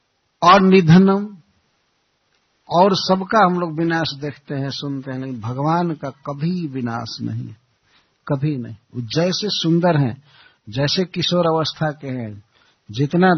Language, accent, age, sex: Hindi, native, 60-79, male